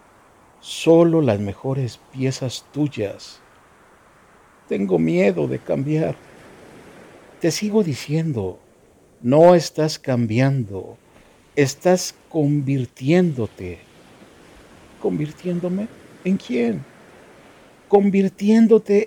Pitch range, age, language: 125-175 Hz, 50-69, Spanish